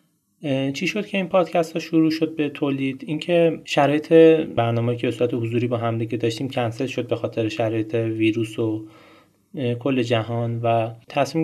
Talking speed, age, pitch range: 170 wpm, 20-39, 115-135 Hz